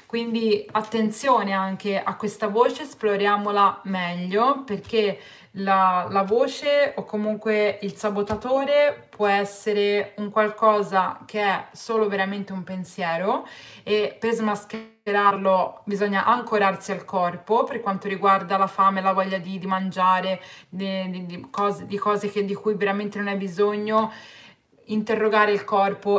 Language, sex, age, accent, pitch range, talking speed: Italian, female, 20-39, native, 185-210 Hz, 125 wpm